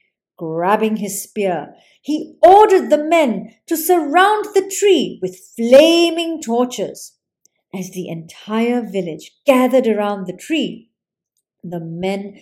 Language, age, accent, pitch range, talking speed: English, 50-69, Indian, 195-310 Hz, 115 wpm